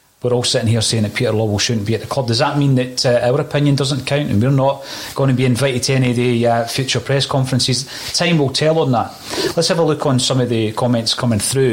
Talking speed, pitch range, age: 270 wpm, 115-145 Hz, 30-49